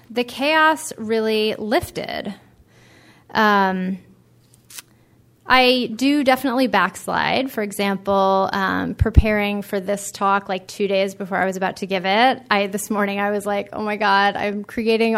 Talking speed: 145 wpm